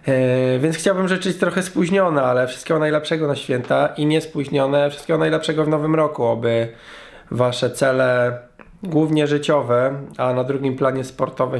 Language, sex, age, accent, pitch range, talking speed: Polish, male, 20-39, native, 115-140 Hz, 150 wpm